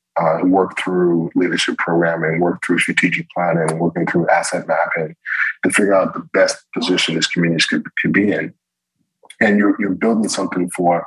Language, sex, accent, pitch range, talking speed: English, male, American, 85-95 Hz, 170 wpm